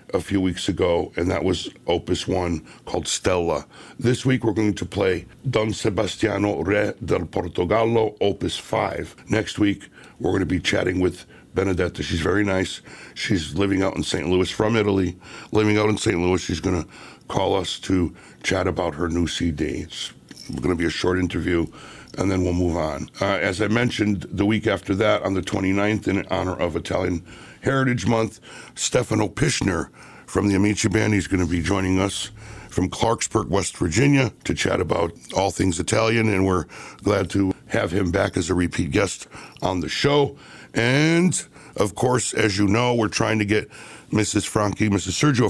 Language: English